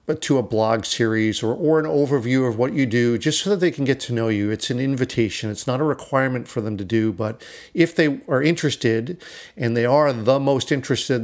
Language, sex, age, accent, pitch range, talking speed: English, male, 50-69, American, 115-155 Hz, 230 wpm